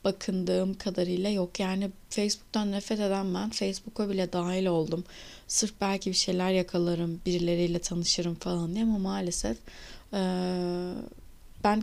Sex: female